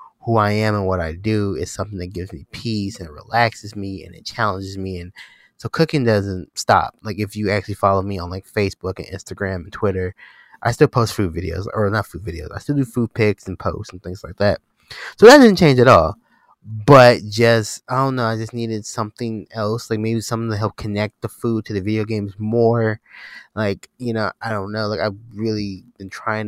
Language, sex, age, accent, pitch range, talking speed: English, male, 20-39, American, 95-115 Hz, 220 wpm